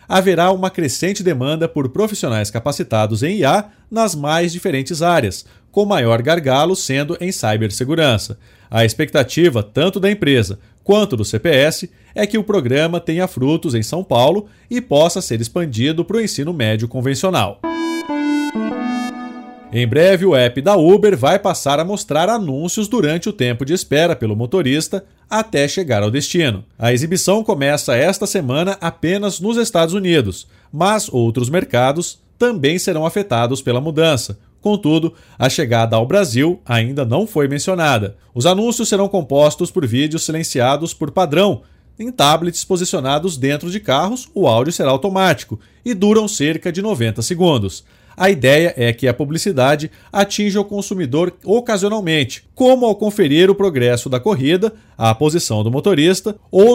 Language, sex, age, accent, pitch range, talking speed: Portuguese, male, 40-59, Brazilian, 130-200 Hz, 150 wpm